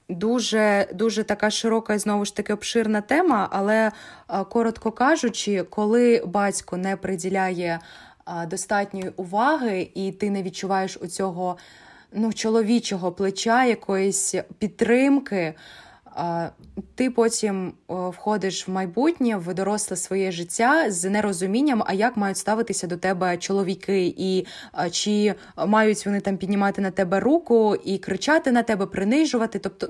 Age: 20-39